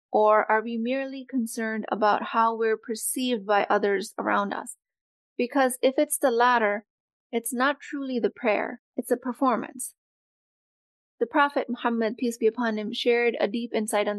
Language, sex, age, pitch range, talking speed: English, female, 20-39, 220-260 Hz, 160 wpm